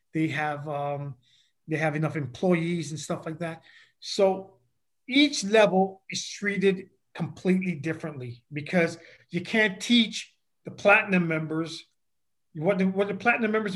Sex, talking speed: male, 135 wpm